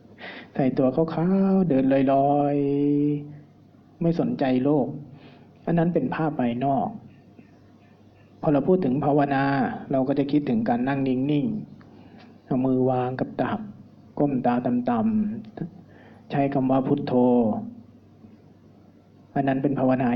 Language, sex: Thai, male